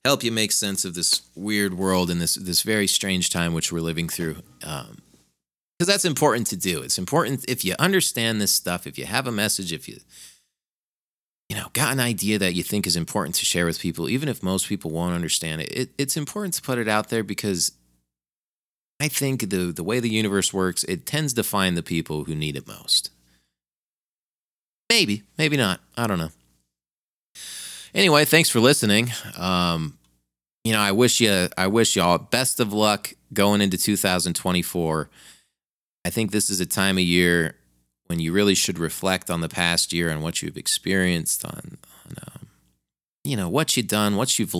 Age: 30-49